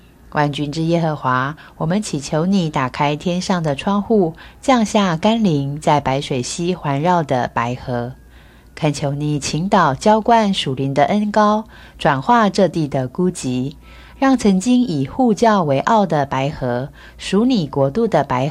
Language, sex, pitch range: Chinese, female, 140-215 Hz